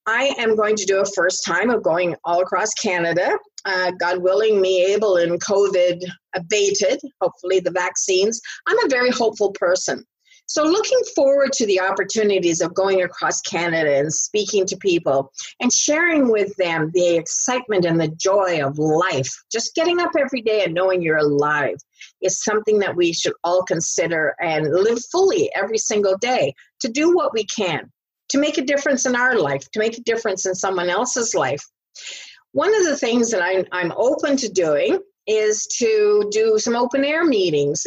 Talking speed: 175 wpm